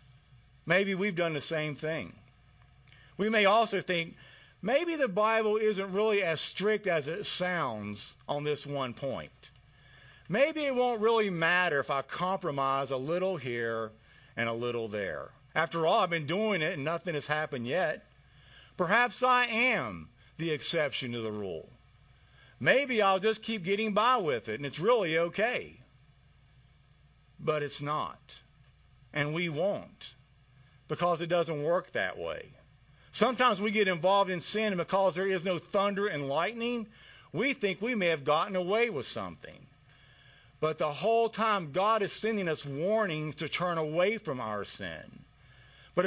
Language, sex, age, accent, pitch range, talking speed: English, male, 50-69, American, 135-190 Hz, 160 wpm